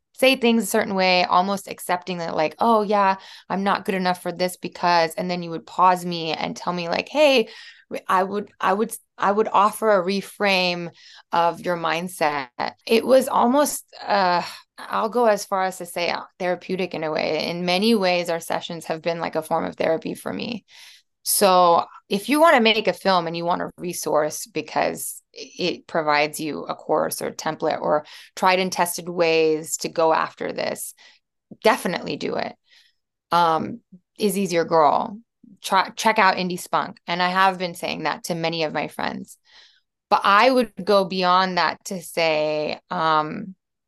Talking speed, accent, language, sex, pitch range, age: 180 wpm, American, English, female, 165-200 Hz, 20-39